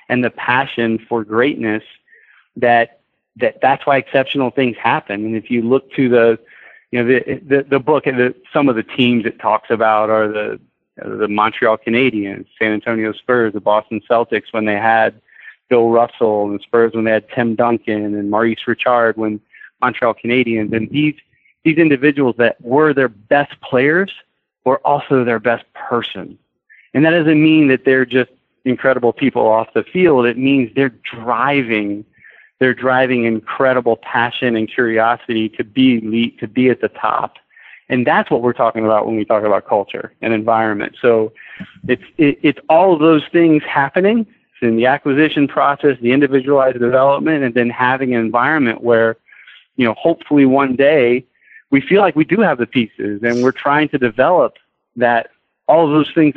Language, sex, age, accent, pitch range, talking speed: English, male, 30-49, American, 115-140 Hz, 175 wpm